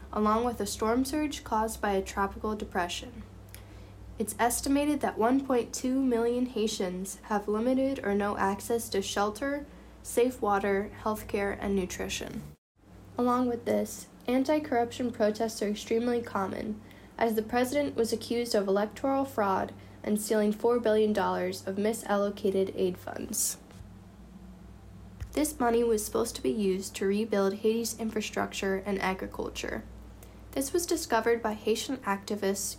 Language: English